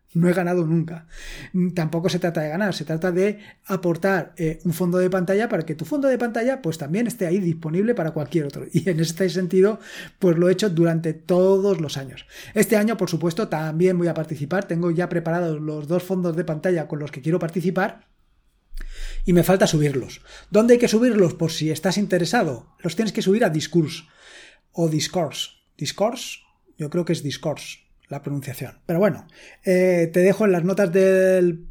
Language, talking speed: Spanish, 195 wpm